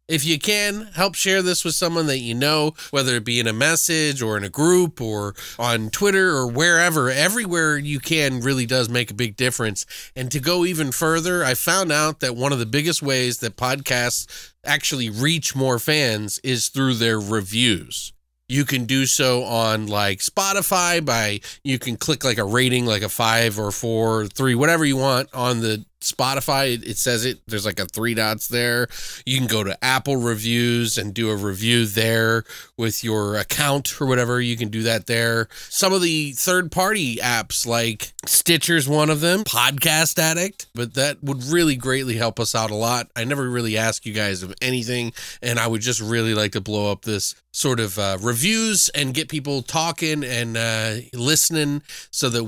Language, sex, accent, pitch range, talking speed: English, male, American, 110-145 Hz, 195 wpm